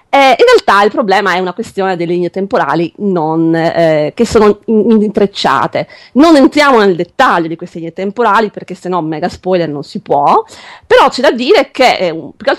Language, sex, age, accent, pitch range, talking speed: Italian, female, 30-49, native, 185-290 Hz, 180 wpm